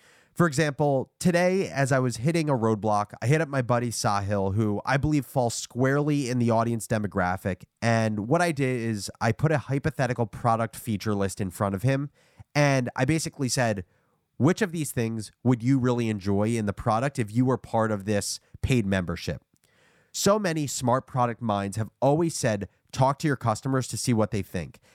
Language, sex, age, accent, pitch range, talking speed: English, male, 30-49, American, 105-135 Hz, 190 wpm